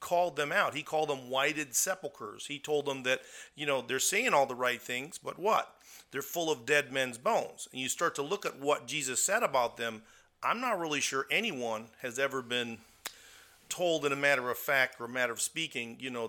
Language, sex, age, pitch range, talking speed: English, male, 40-59, 125-155 Hz, 220 wpm